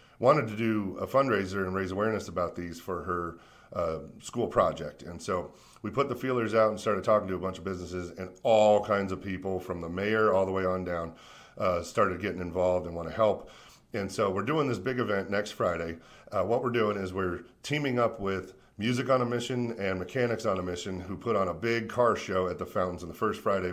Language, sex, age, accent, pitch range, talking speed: English, male, 40-59, American, 90-110 Hz, 235 wpm